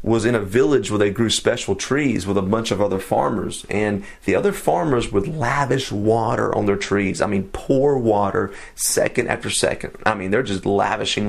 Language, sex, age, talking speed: English, male, 30-49, 195 wpm